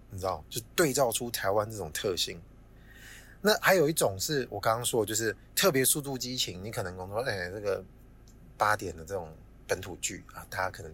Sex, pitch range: male, 95-130 Hz